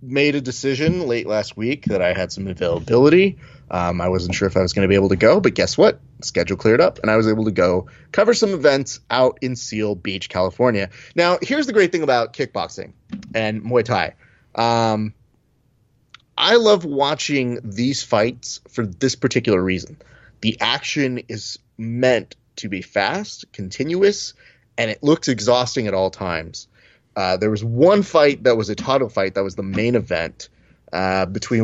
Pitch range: 105-130 Hz